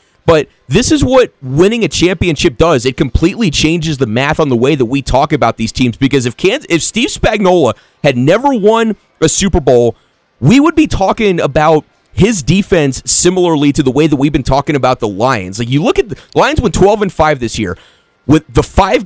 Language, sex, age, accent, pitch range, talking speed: English, male, 30-49, American, 135-190 Hz, 210 wpm